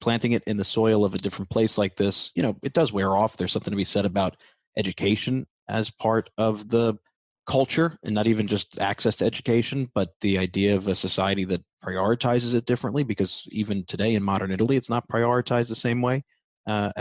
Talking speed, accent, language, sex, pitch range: 210 wpm, American, English, male, 95-115 Hz